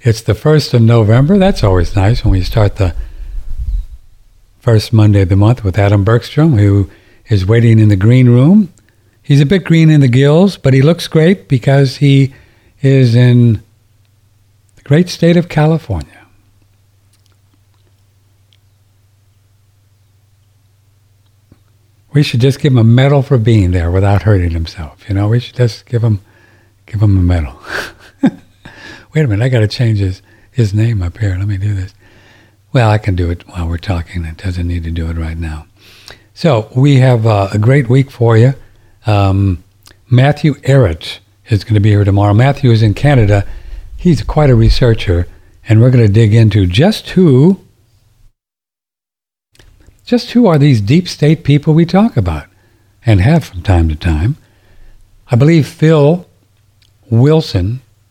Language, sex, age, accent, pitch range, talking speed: English, male, 60-79, American, 100-125 Hz, 160 wpm